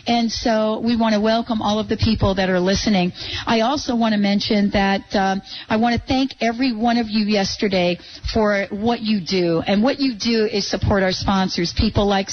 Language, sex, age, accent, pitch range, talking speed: English, female, 40-59, American, 195-230 Hz, 210 wpm